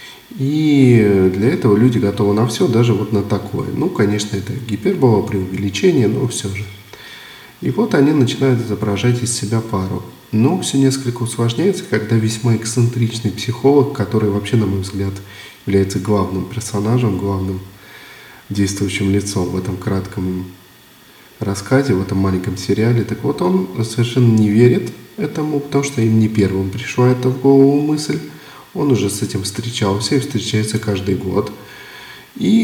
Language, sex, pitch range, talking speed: Russian, male, 100-125 Hz, 150 wpm